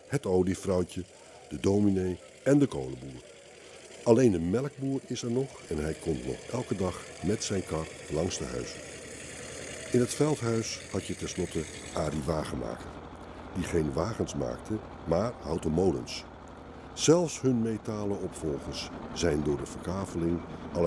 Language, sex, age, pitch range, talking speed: Dutch, male, 60-79, 80-105 Hz, 140 wpm